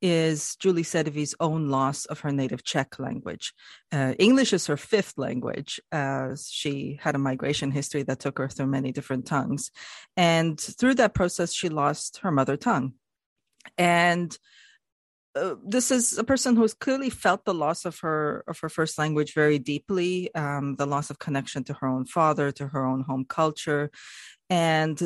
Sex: female